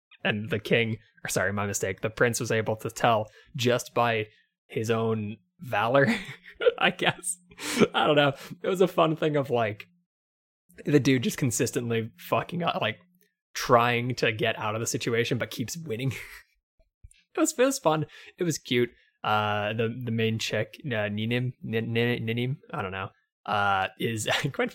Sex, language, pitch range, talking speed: male, English, 110-155 Hz, 175 wpm